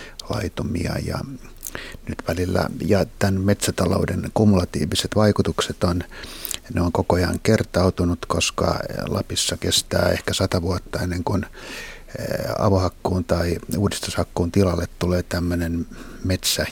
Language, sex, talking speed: Finnish, male, 105 wpm